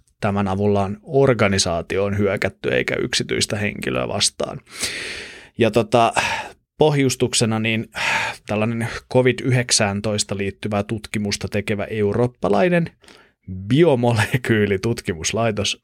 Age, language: 30-49, Finnish